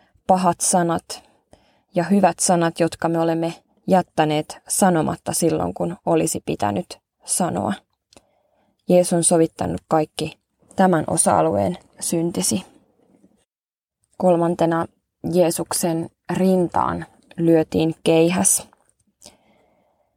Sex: female